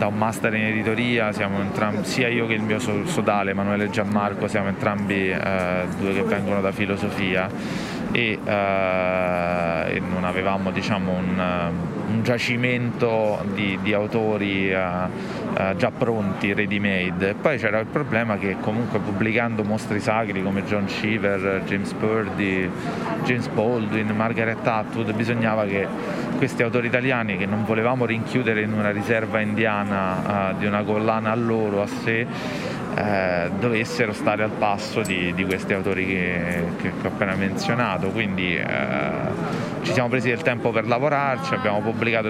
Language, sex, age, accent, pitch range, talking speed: Italian, male, 20-39, native, 95-115 Hz, 140 wpm